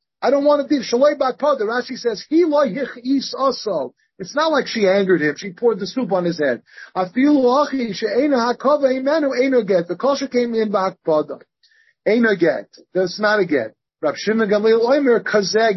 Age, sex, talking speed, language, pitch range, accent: 40-59, male, 135 wpm, English, 190-255 Hz, American